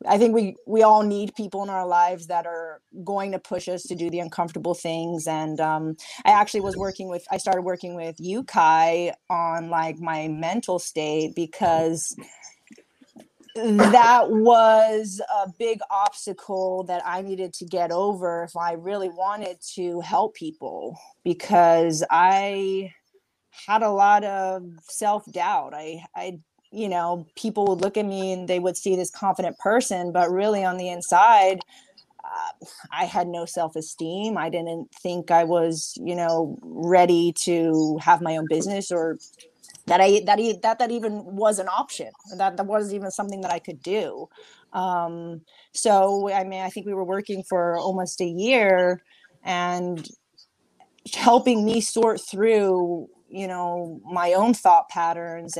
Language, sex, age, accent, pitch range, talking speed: English, female, 30-49, American, 170-205 Hz, 160 wpm